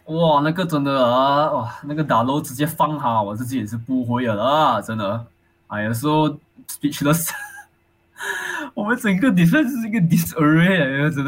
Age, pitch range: 20-39, 120-170 Hz